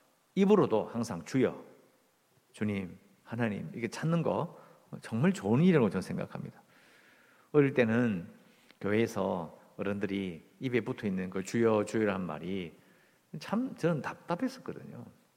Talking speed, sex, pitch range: 105 wpm, male, 105-165 Hz